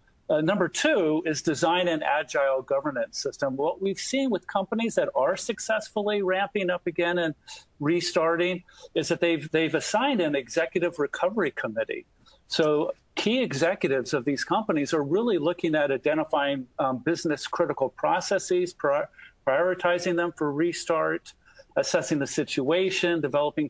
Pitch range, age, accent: 145-185 Hz, 50-69, American